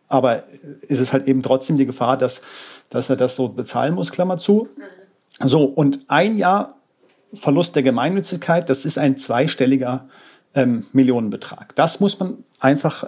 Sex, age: male, 40-59